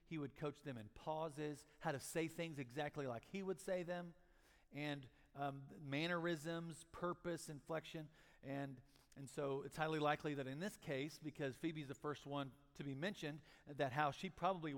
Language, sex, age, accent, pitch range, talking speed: English, male, 50-69, American, 135-165 Hz, 175 wpm